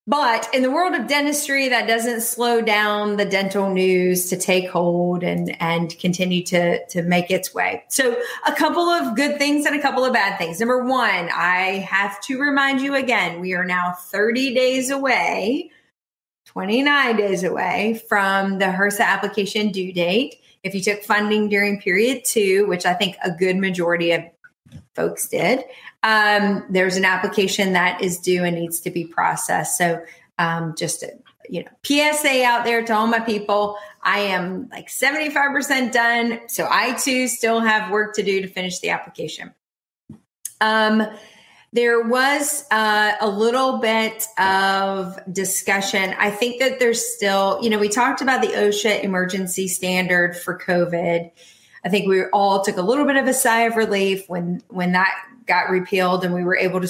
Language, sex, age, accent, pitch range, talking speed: English, female, 30-49, American, 185-235 Hz, 175 wpm